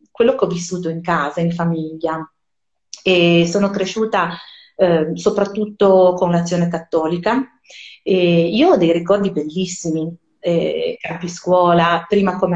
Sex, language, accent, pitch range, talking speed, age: female, Italian, native, 170-205 Hz, 130 wpm, 30-49